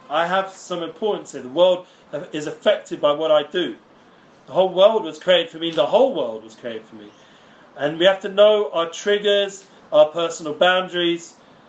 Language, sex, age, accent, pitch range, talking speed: English, male, 40-59, British, 155-195 Hz, 190 wpm